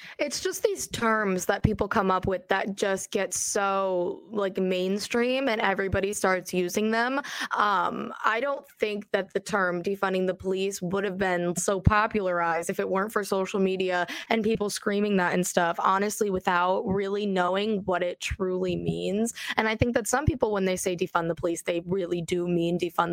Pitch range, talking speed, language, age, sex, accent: 185-215 Hz, 185 wpm, English, 20-39, female, American